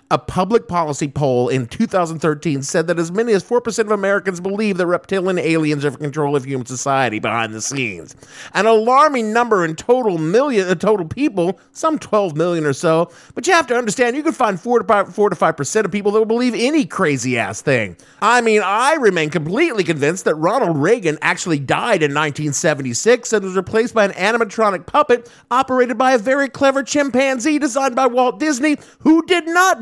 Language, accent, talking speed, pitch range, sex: English, American, 190 wpm, 145-225 Hz, male